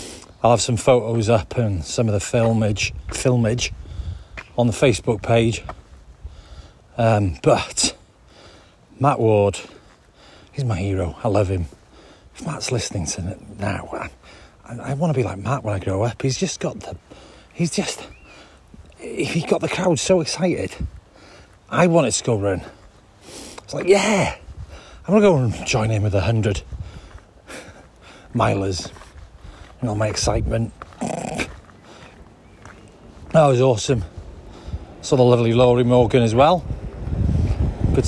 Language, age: English, 40-59